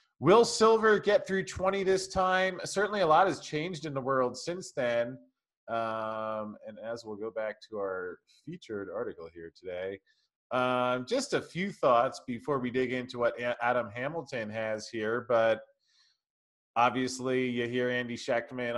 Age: 30-49